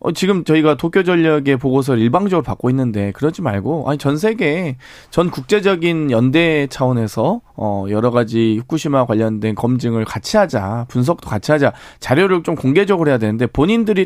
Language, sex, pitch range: Korean, male, 120-160 Hz